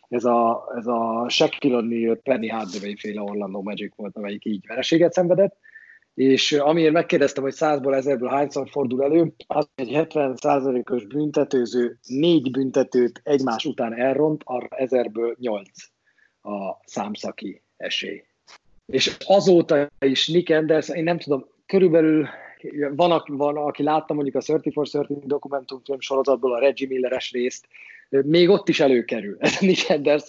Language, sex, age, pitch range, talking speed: Hungarian, male, 30-49, 125-145 Hz, 140 wpm